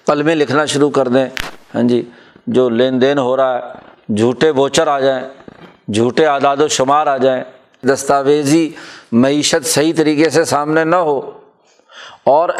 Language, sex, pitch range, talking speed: Urdu, male, 135-175 Hz, 150 wpm